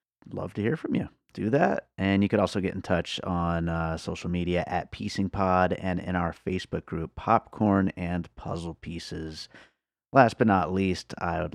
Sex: male